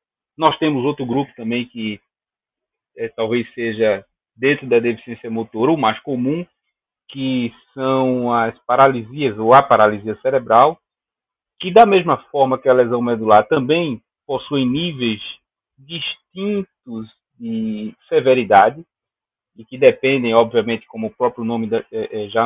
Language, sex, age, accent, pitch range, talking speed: Portuguese, male, 30-49, Brazilian, 115-140 Hz, 125 wpm